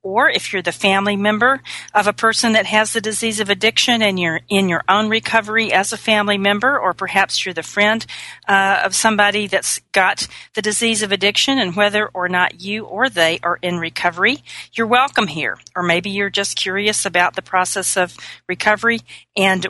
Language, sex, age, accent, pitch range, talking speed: English, female, 40-59, American, 170-200 Hz, 190 wpm